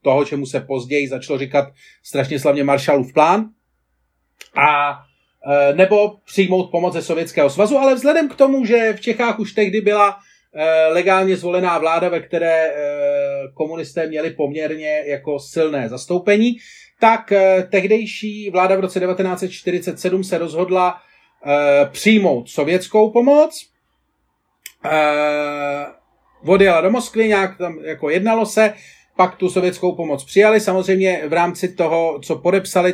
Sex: male